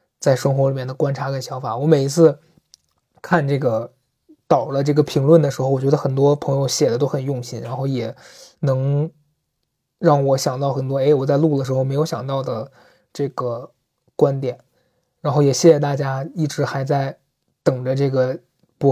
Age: 20-39